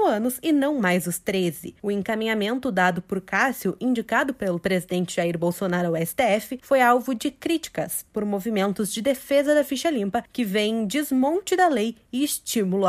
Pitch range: 195-275 Hz